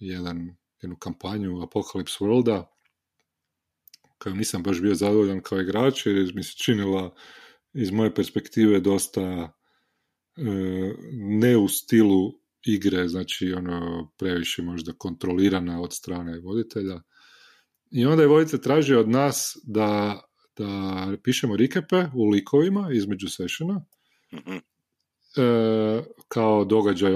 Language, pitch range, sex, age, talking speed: Croatian, 95-125 Hz, male, 30-49, 115 wpm